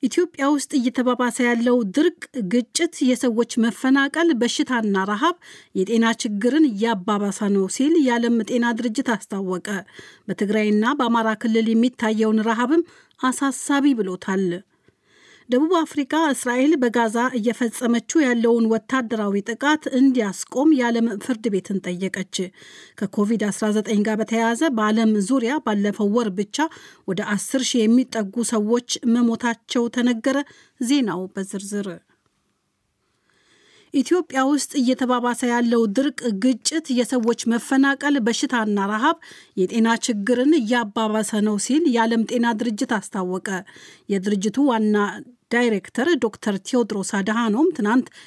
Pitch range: 215-260 Hz